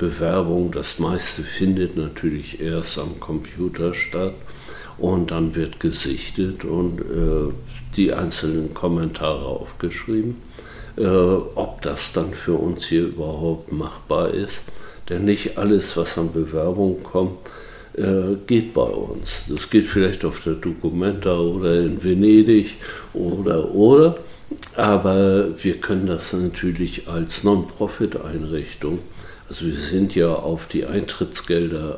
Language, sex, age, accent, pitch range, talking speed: German, male, 60-79, German, 85-95 Hz, 120 wpm